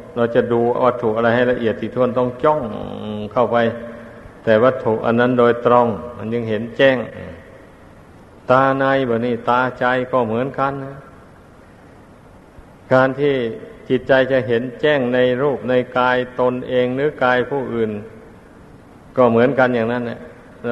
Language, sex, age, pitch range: Thai, male, 60-79, 115-135 Hz